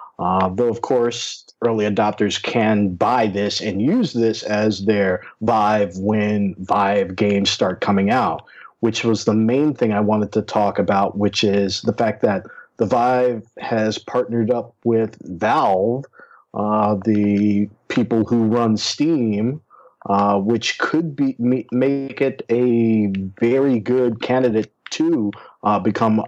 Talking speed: 145 wpm